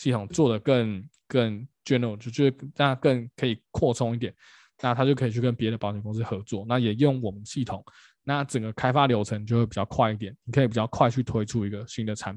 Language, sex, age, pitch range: Chinese, male, 20-39, 110-130 Hz